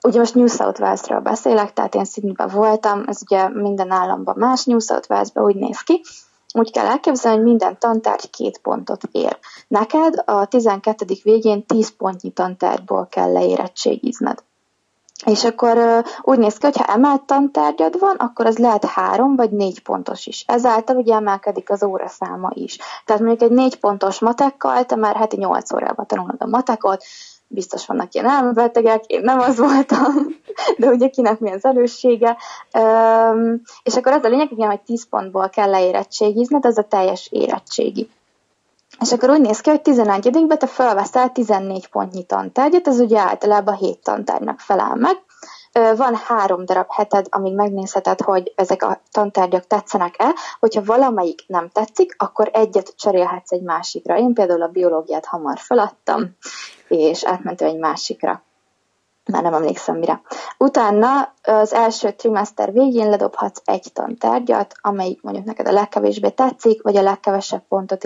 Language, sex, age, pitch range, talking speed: Hungarian, female, 20-39, 200-250 Hz, 155 wpm